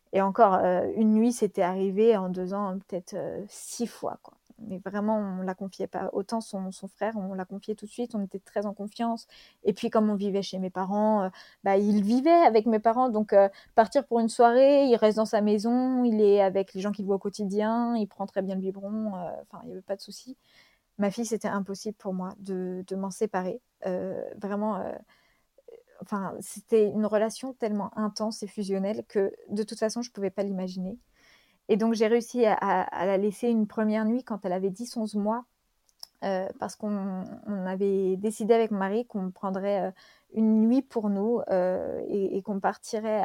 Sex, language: female, French